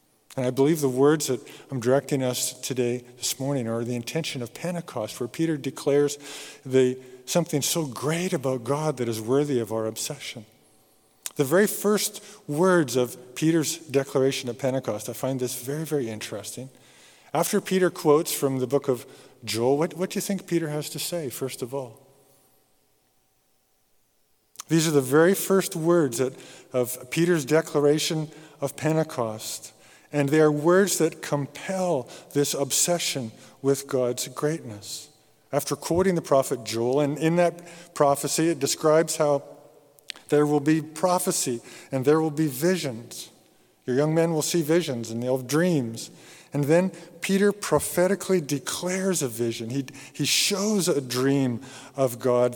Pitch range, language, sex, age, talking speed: 125-165 Hz, English, male, 50-69, 150 wpm